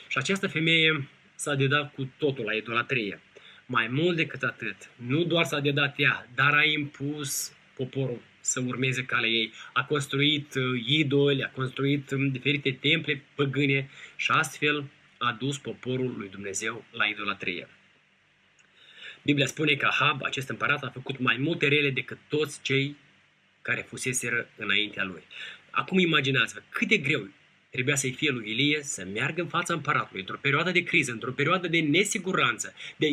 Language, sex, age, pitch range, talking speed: Romanian, male, 20-39, 130-155 Hz, 155 wpm